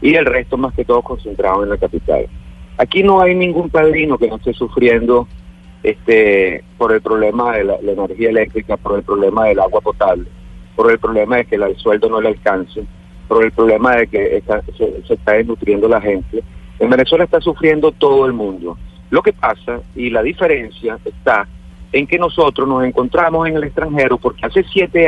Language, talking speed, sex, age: Spanish, 195 wpm, male, 40-59